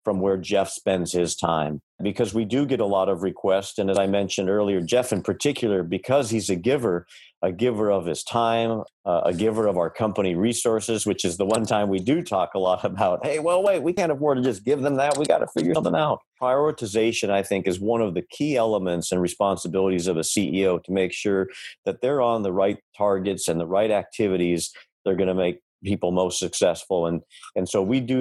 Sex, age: male, 50-69